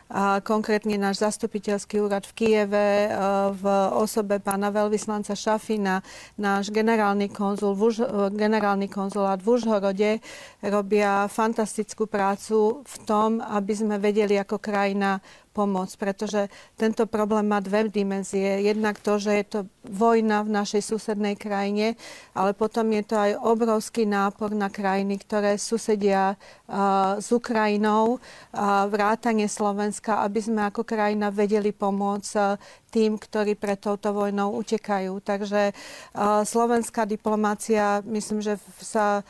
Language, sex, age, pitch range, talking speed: Slovak, female, 40-59, 200-215 Hz, 130 wpm